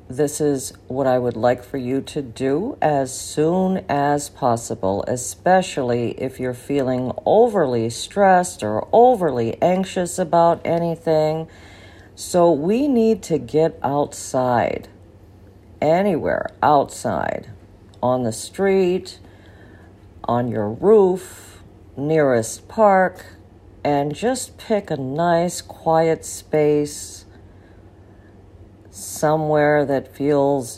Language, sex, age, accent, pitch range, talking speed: English, female, 50-69, American, 100-160 Hz, 100 wpm